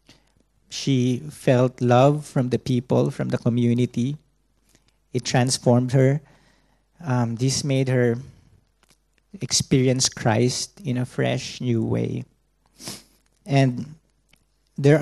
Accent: Filipino